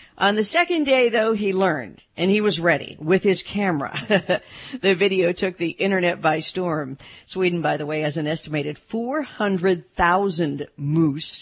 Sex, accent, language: female, American, English